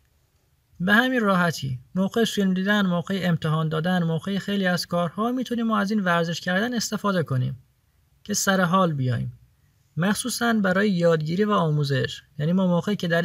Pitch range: 135-205 Hz